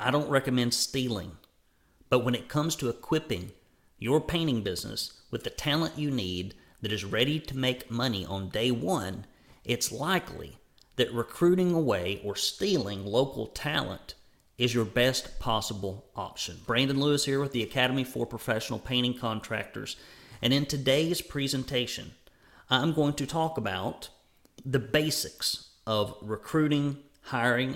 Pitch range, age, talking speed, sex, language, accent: 110-140 Hz, 40-59, 140 wpm, male, English, American